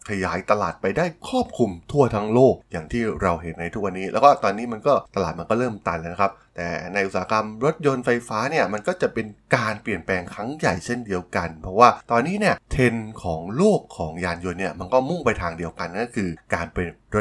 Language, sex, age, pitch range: Thai, male, 20-39, 90-125 Hz